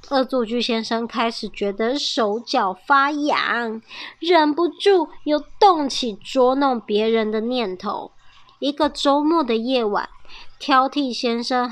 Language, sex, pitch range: Chinese, male, 225-315 Hz